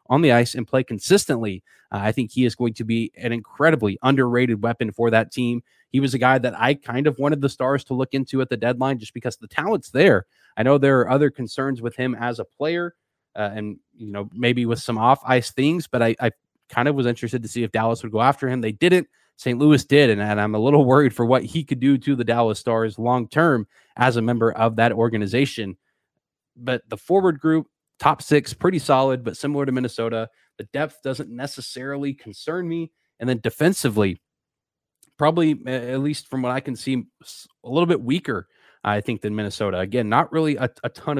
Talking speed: 215 wpm